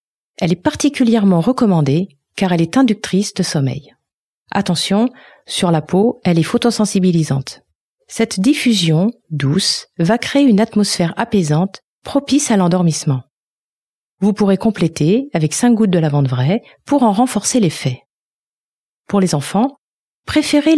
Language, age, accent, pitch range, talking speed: French, 40-59, French, 170-230 Hz, 130 wpm